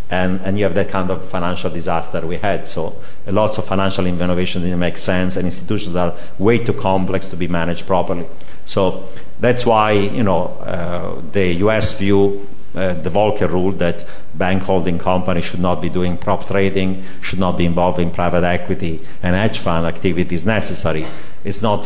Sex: male